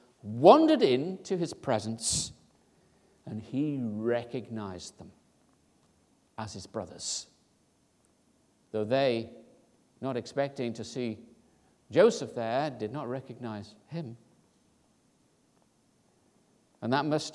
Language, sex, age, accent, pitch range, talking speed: English, male, 60-79, British, 105-135 Hz, 90 wpm